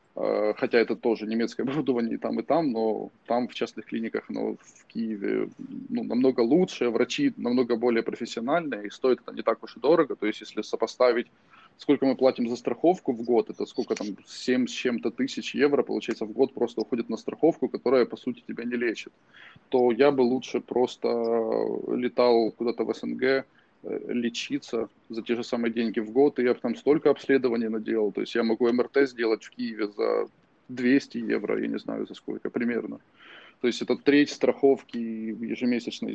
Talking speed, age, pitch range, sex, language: 185 wpm, 20-39, 115-130 Hz, male, Russian